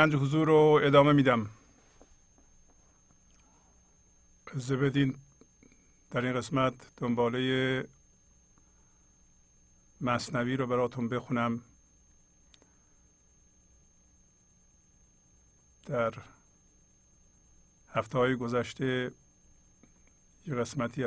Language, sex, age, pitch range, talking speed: English, male, 50-69, 110-130 Hz, 60 wpm